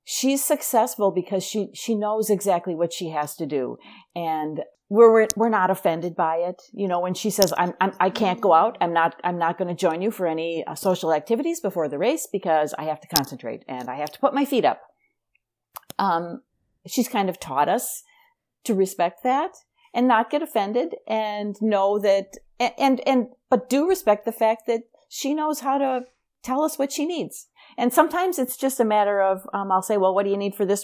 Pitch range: 170-235 Hz